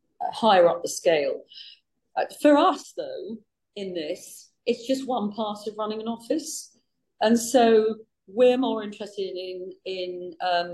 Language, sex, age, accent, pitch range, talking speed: English, female, 40-59, British, 175-250 Hz, 145 wpm